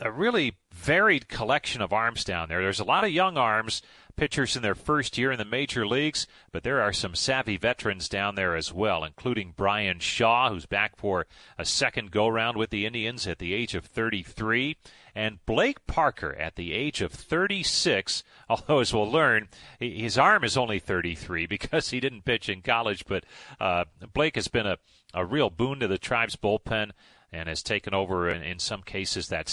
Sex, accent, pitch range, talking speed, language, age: male, American, 95-135 Hz, 195 wpm, English, 40-59